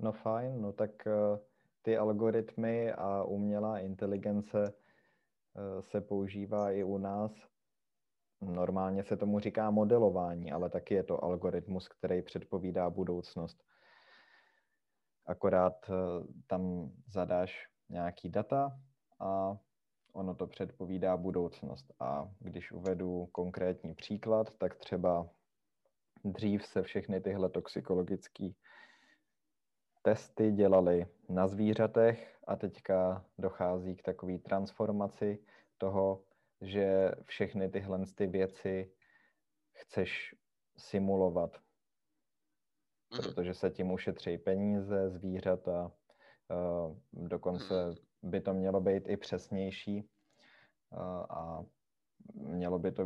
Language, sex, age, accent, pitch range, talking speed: Czech, male, 20-39, native, 90-105 Hz, 95 wpm